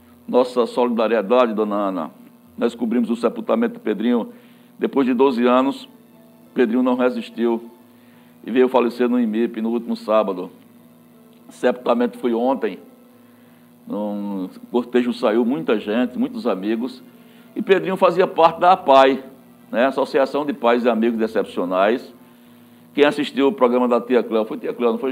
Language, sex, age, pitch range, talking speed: Portuguese, male, 60-79, 115-190 Hz, 150 wpm